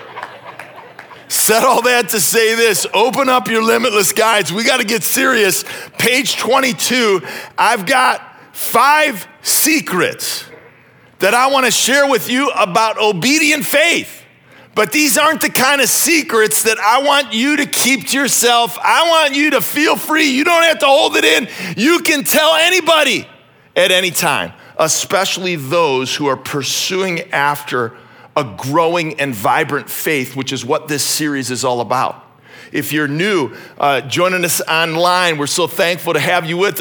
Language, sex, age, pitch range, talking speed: English, male, 40-59, 165-240 Hz, 165 wpm